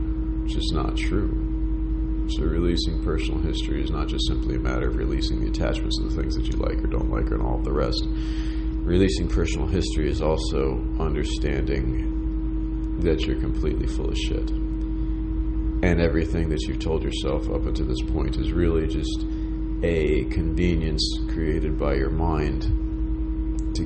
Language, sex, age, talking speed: English, male, 40-59, 160 wpm